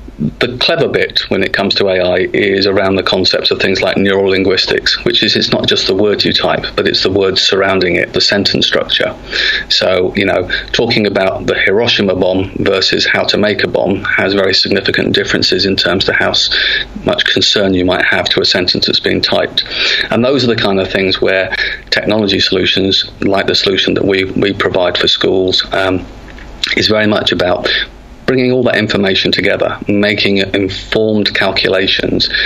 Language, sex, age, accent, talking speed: English, male, 40-59, British, 185 wpm